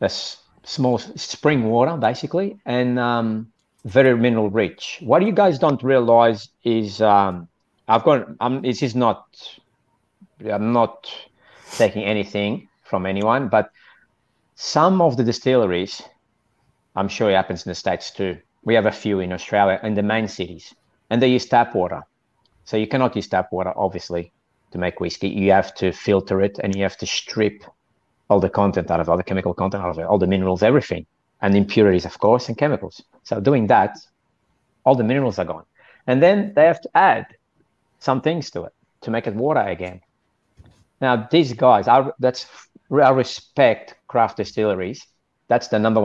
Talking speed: 175 wpm